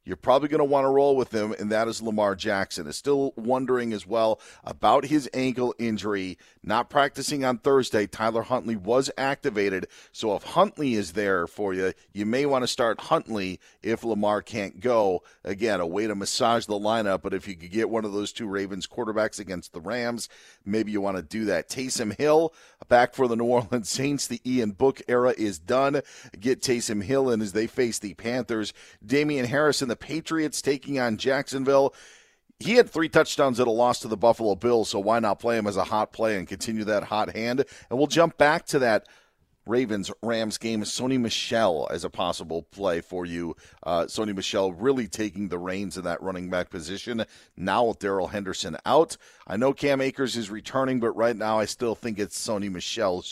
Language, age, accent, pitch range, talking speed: English, 40-59, American, 100-130 Hz, 200 wpm